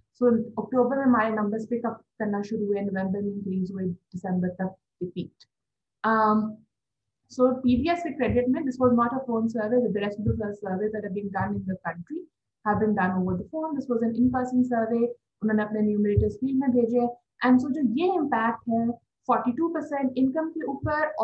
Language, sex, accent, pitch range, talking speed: English, female, Indian, 215-275 Hz, 155 wpm